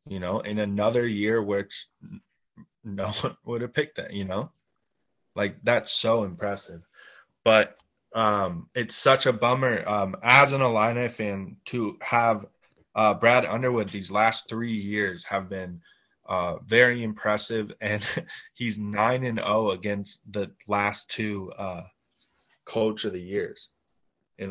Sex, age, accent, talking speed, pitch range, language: male, 20-39, American, 140 wpm, 100-120 Hz, English